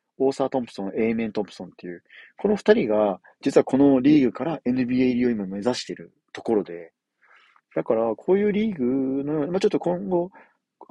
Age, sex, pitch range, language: 40-59, male, 105-145 Hz, Japanese